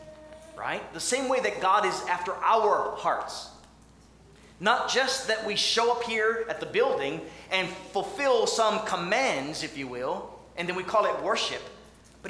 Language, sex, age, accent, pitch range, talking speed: English, male, 30-49, American, 170-250 Hz, 165 wpm